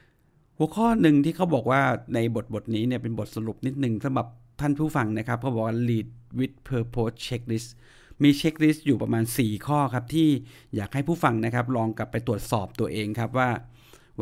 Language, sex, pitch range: Thai, male, 115-150 Hz